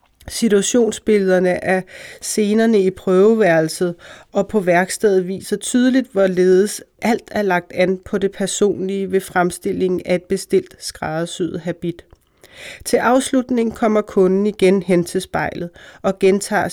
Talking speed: 125 wpm